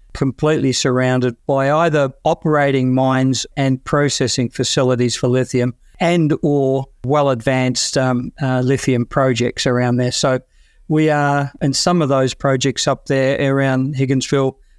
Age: 50-69